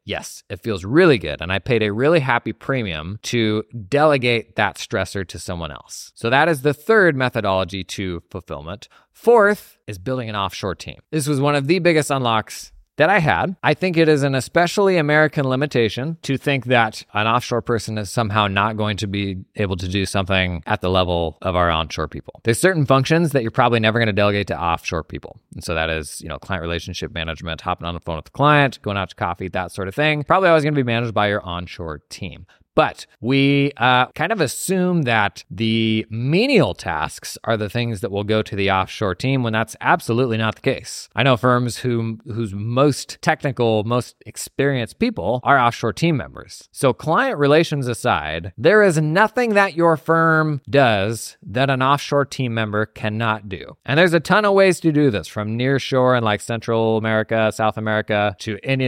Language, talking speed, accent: English, 200 wpm, American